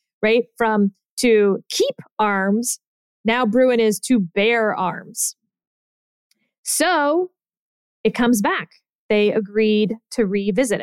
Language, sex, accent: English, female, American